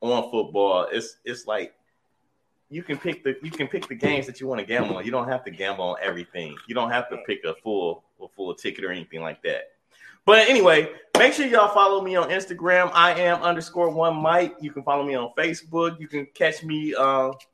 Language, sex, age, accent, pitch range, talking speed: English, male, 20-39, American, 110-155 Hz, 225 wpm